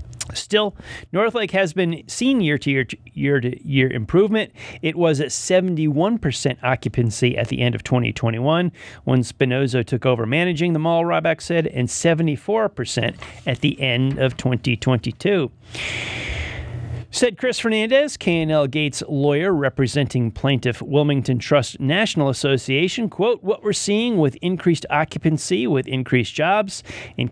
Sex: male